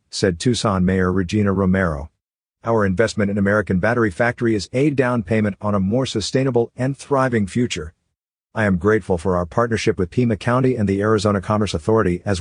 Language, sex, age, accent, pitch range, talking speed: English, male, 50-69, American, 100-125 Hz, 180 wpm